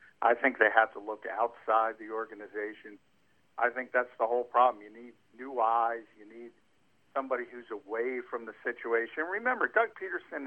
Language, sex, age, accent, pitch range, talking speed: English, male, 60-79, American, 110-130 Hz, 170 wpm